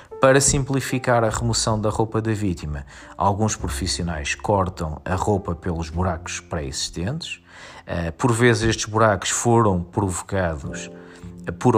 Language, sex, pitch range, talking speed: Portuguese, male, 85-110 Hz, 115 wpm